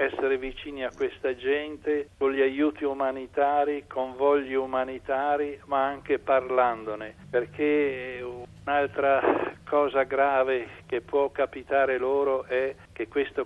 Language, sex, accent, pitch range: Italian, male, native, 115-145 Hz